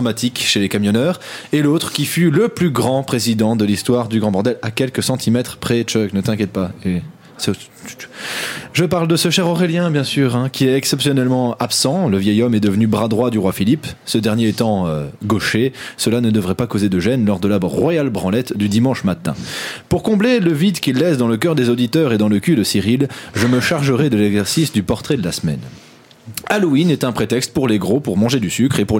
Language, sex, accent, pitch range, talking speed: English, male, French, 110-150 Hz, 225 wpm